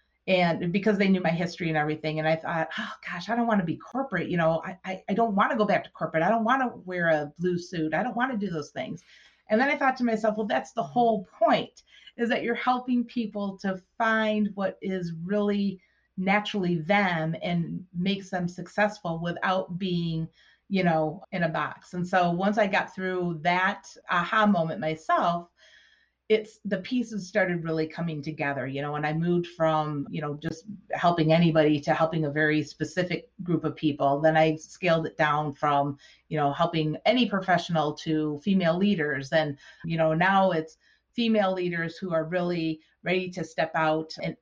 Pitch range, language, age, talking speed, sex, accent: 160-210 Hz, English, 30-49, 195 wpm, female, American